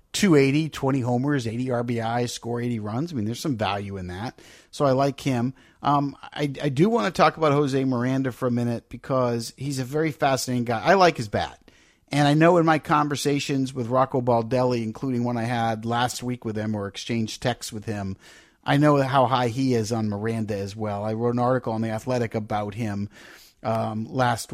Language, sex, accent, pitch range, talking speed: English, male, American, 115-140 Hz, 210 wpm